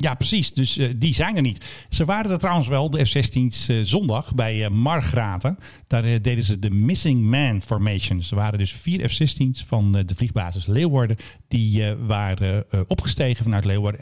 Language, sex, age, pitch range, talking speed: Dutch, male, 50-69, 105-135 Hz, 195 wpm